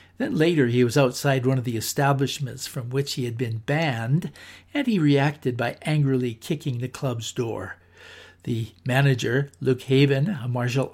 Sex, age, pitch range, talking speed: male, 60-79, 115-140 Hz, 165 wpm